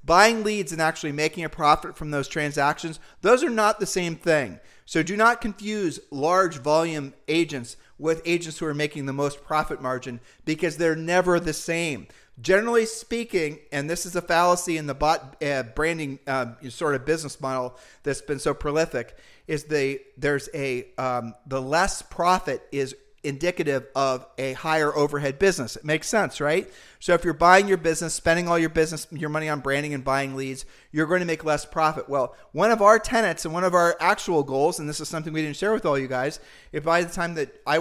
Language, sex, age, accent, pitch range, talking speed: English, male, 40-59, American, 145-180 Hz, 205 wpm